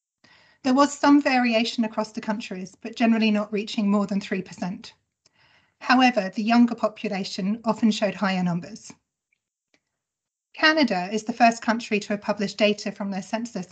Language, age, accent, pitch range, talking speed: English, 30-49, British, 200-235 Hz, 155 wpm